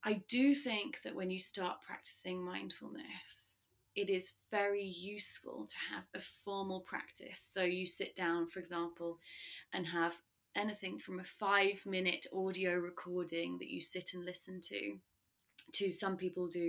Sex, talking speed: female, 150 wpm